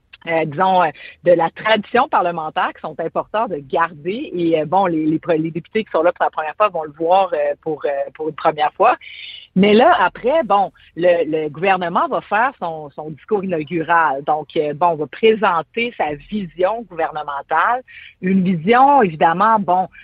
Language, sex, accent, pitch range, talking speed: French, female, Canadian, 160-205 Hz, 185 wpm